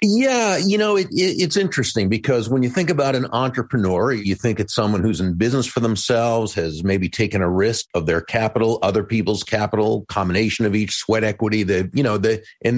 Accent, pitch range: American, 110-160 Hz